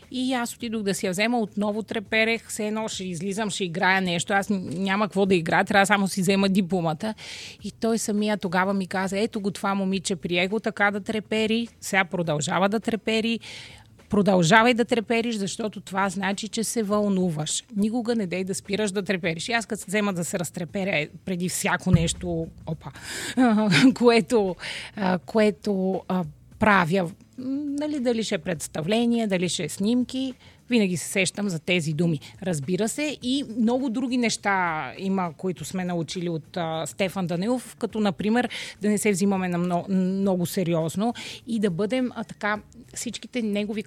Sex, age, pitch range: female, 30-49, 185-220 Hz